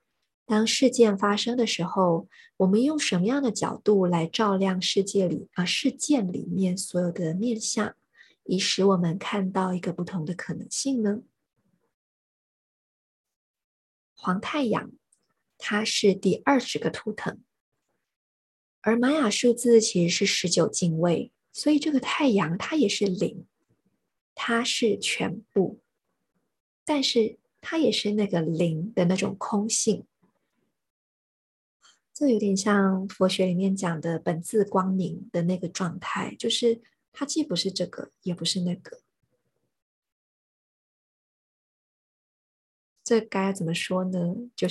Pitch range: 180-225 Hz